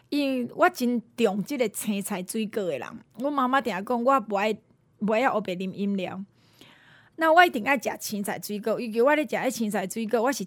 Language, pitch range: Chinese, 215-305 Hz